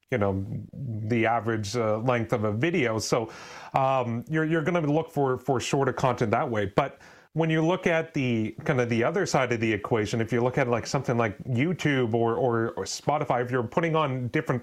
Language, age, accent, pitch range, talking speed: English, 30-49, American, 115-145 Hz, 220 wpm